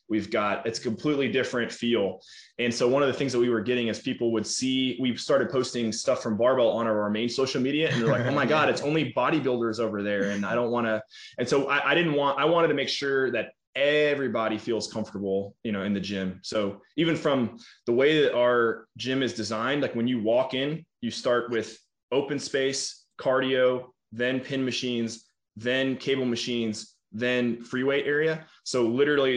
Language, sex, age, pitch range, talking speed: English, male, 20-39, 110-130 Hz, 200 wpm